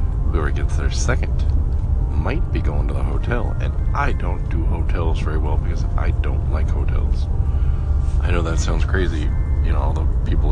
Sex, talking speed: male, 175 wpm